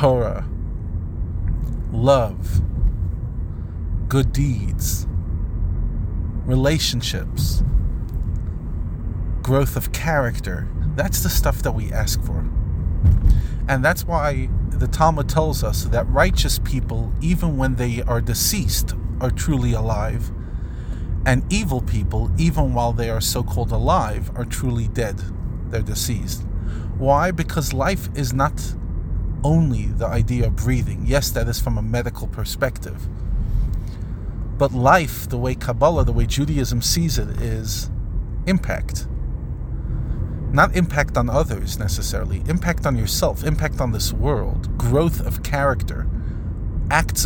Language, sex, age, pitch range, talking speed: English, male, 40-59, 90-125 Hz, 115 wpm